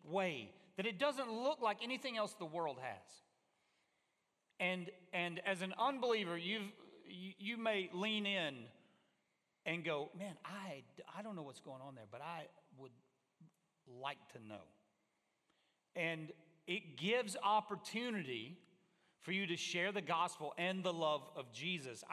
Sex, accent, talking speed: male, American, 145 wpm